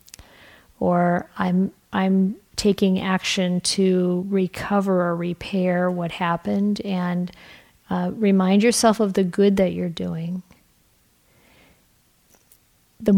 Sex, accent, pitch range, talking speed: female, American, 175-195 Hz, 100 wpm